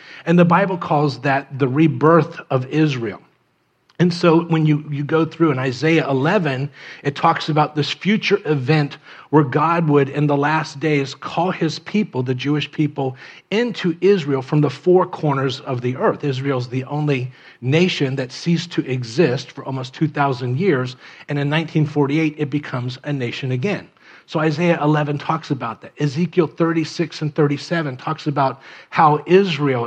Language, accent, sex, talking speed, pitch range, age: English, American, male, 165 wpm, 135-160 Hz, 40-59